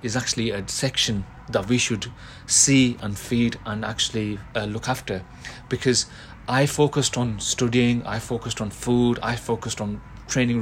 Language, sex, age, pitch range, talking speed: English, male, 30-49, 110-125 Hz, 160 wpm